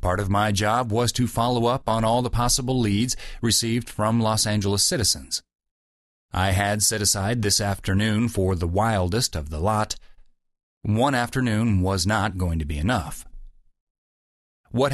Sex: male